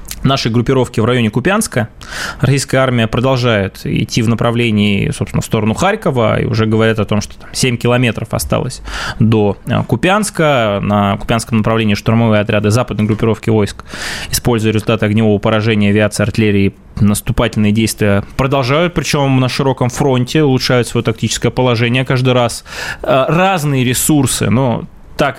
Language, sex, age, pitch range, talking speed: Russian, male, 20-39, 110-150 Hz, 135 wpm